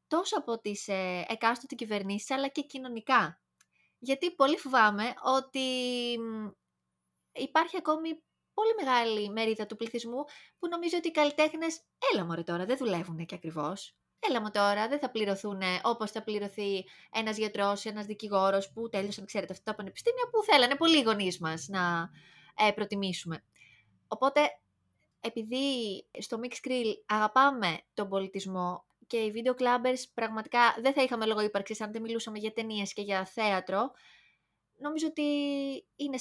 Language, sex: Greek, female